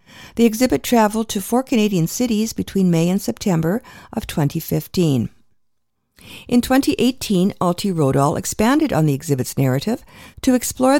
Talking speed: 130 wpm